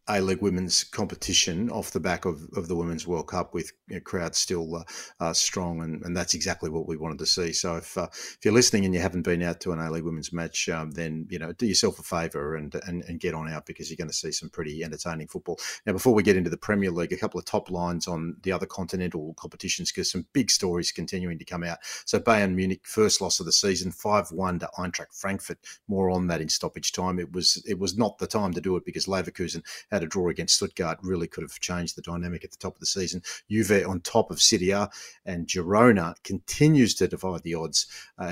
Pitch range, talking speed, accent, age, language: 85-95 Hz, 245 wpm, Australian, 40-59, English